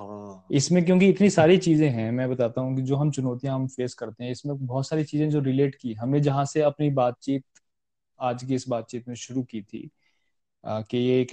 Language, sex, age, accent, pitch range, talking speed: Hindi, male, 20-39, native, 120-145 Hz, 205 wpm